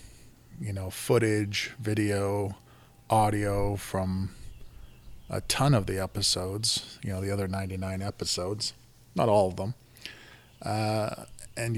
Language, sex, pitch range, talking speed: English, male, 95-115 Hz, 115 wpm